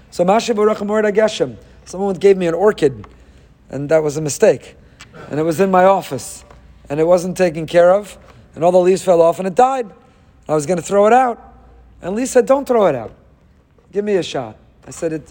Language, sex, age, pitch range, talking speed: English, male, 40-59, 155-205 Hz, 210 wpm